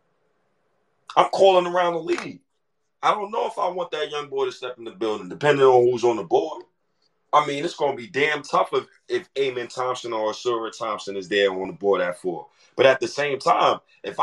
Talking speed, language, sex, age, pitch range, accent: 220 wpm, English, male, 30-49, 110-150 Hz, American